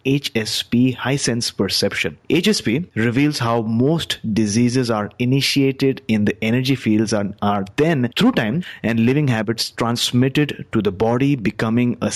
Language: English